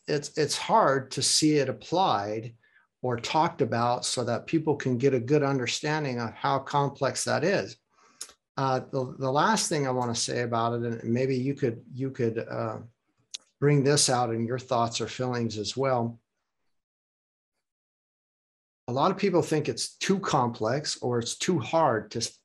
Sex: male